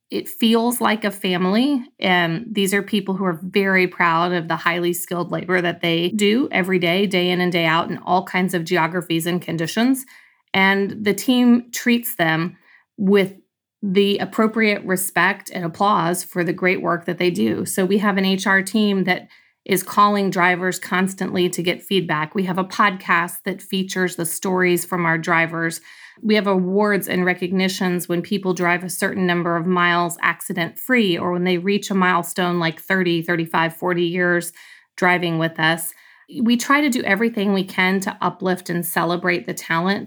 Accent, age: American, 30-49